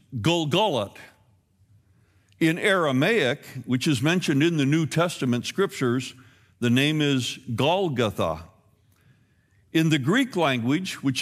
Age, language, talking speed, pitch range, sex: 60-79, English, 105 wpm, 105-150 Hz, male